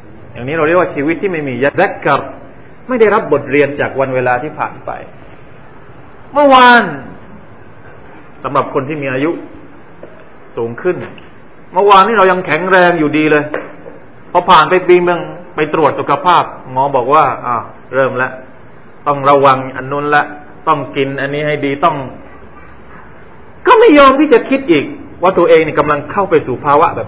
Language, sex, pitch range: Thai, male, 135-215 Hz